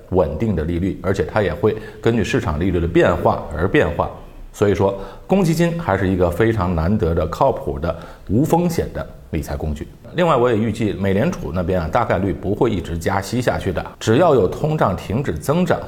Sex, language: male, Chinese